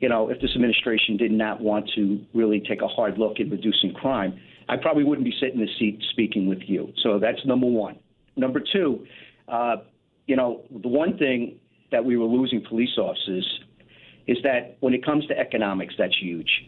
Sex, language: male, English